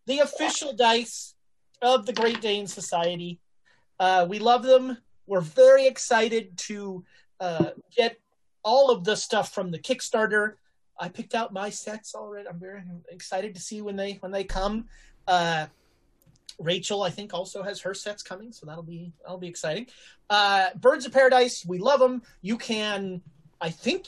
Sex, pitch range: male, 175-235 Hz